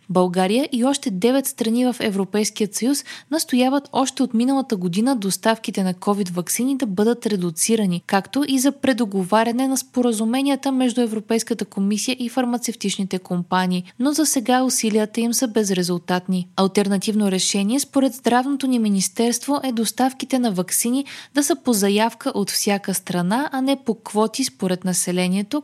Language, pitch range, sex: Bulgarian, 195-260 Hz, female